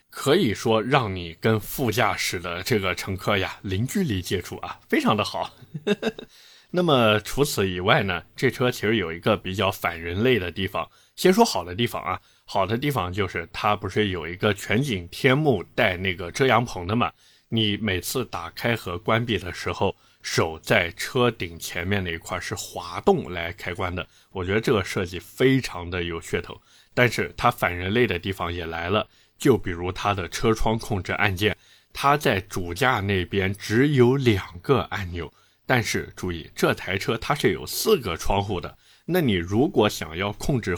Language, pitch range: Chinese, 90-120 Hz